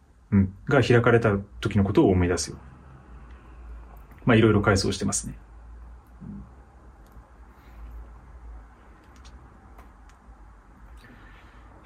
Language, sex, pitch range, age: Japanese, male, 90-120 Hz, 30-49